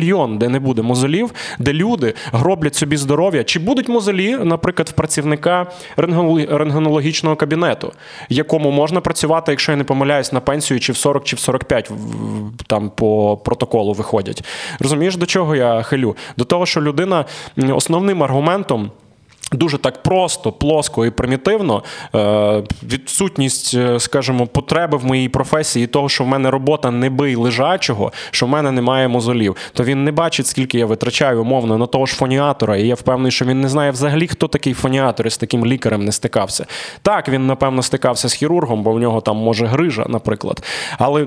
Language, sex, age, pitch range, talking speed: Ukrainian, male, 20-39, 125-160 Hz, 165 wpm